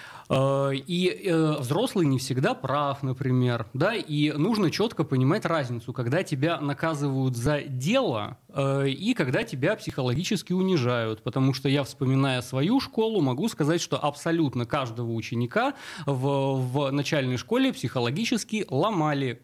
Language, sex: Russian, male